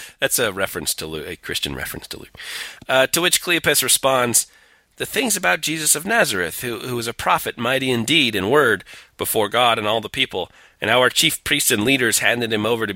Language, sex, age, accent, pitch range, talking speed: English, male, 40-59, American, 90-120 Hz, 225 wpm